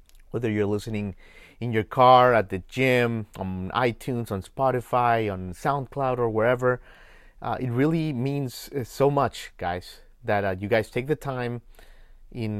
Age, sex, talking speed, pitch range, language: 30-49, male, 150 wpm, 105-135 Hz, English